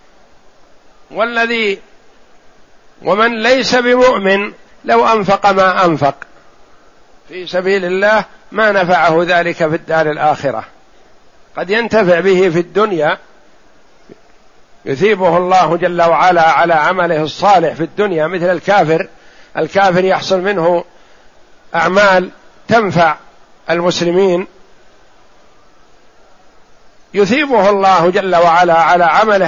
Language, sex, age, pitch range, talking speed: Arabic, male, 60-79, 170-210 Hz, 90 wpm